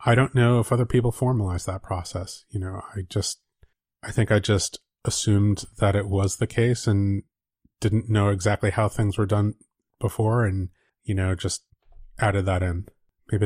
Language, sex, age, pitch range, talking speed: English, male, 30-49, 95-110 Hz, 180 wpm